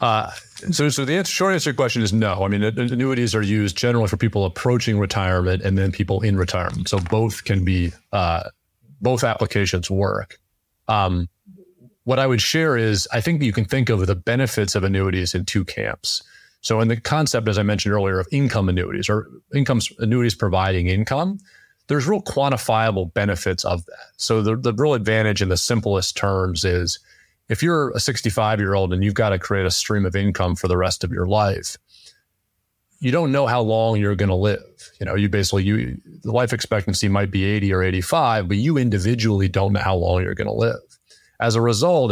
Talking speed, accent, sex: 200 wpm, American, male